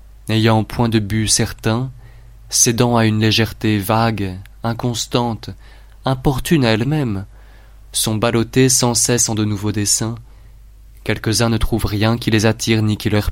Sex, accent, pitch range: male, French, 100-115 Hz